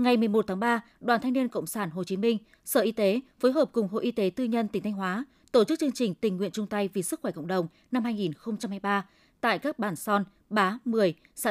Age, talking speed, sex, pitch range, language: 20-39, 250 wpm, female, 195-250 Hz, Vietnamese